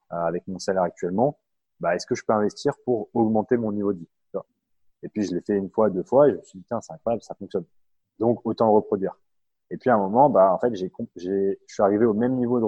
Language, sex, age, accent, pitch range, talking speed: French, male, 30-49, French, 85-110 Hz, 265 wpm